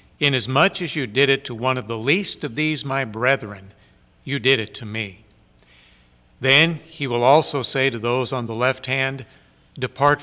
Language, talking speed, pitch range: English, 180 wpm, 110-140 Hz